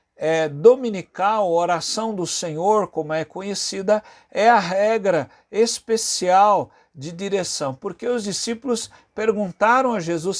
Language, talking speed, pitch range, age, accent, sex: Portuguese, 110 wpm, 165-210 Hz, 60-79, Brazilian, male